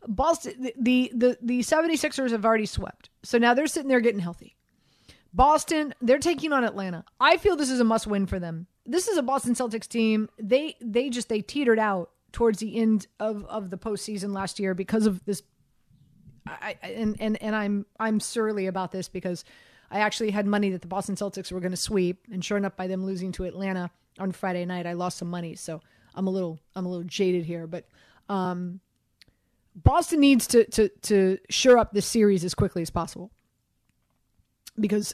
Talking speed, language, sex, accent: 195 wpm, English, female, American